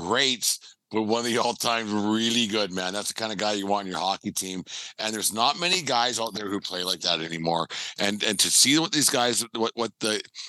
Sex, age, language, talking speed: male, 50-69, English, 240 wpm